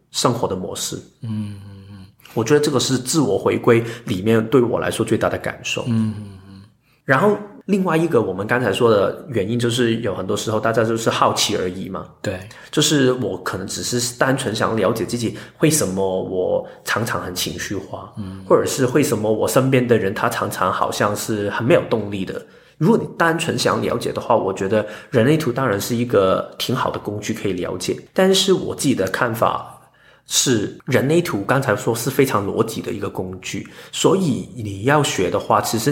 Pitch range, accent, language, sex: 105-135 Hz, native, Chinese, male